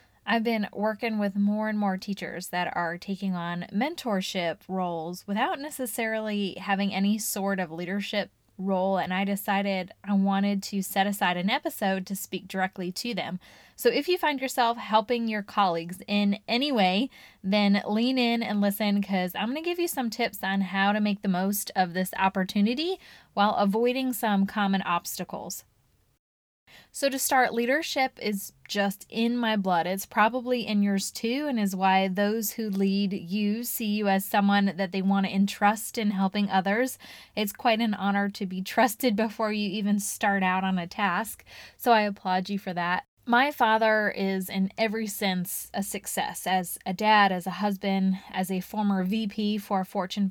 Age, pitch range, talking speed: 10-29, 190-220 Hz, 180 wpm